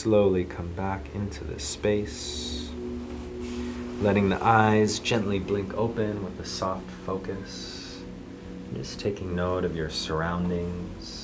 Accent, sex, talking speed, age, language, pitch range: American, male, 125 wpm, 30-49, English, 70-90 Hz